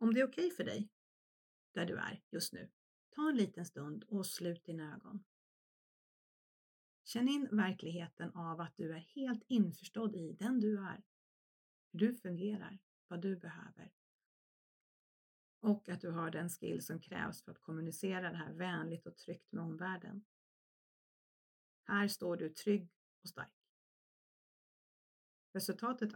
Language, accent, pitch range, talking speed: Swedish, native, 175-225 Hz, 145 wpm